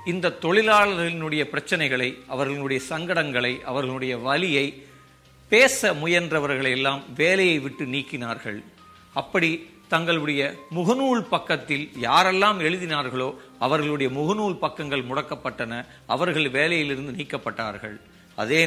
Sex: male